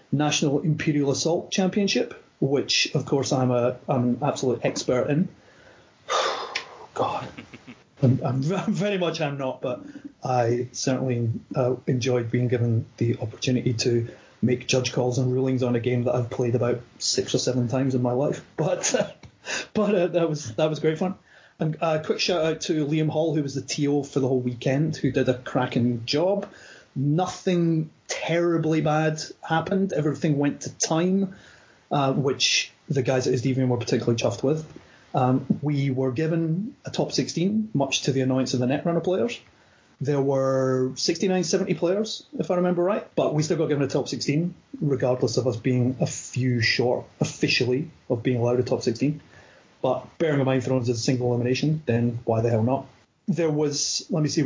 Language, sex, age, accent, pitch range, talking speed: English, male, 30-49, British, 125-165 Hz, 185 wpm